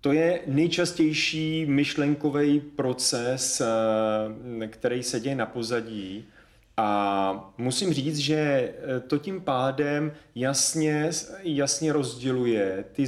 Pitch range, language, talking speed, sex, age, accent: 115-145 Hz, Czech, 95 wpm, male, 30-49, native